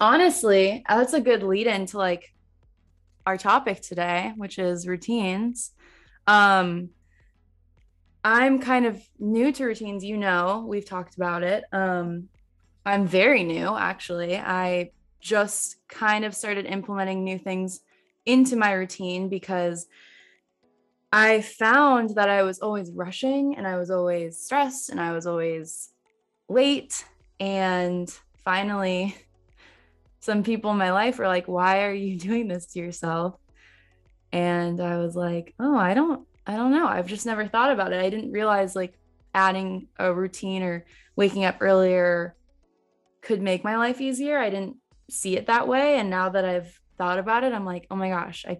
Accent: American